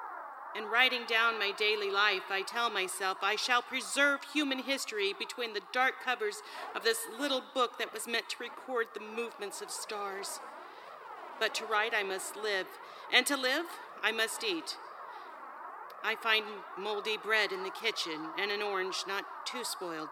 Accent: American